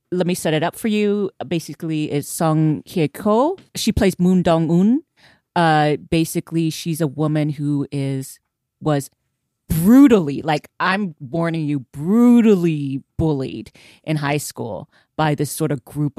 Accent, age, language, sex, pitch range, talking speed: American, 30-49, English, female, 145-190 Hz, 145 wpm